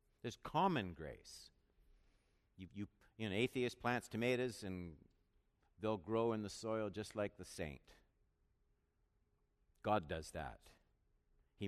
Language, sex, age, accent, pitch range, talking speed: English, male, 50-69, American, 95-160 Hz, 125 wpm